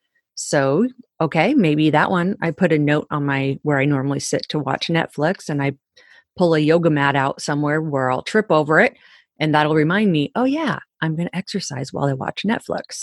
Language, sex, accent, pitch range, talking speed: English, female, American, 145-180 Hz, 205 wpm